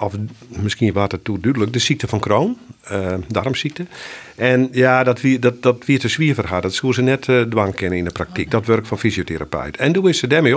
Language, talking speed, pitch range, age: Dutch, 225 wpm, 100-135 Hz, 50-69